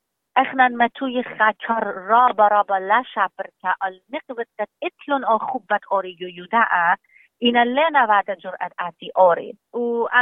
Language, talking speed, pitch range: English, 135 wpm, 195-260 Hz